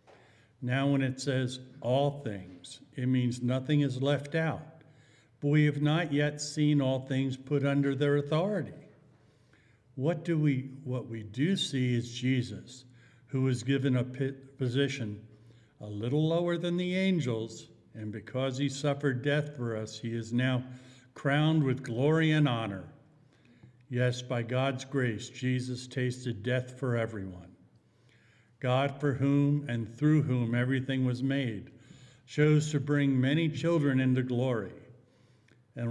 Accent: American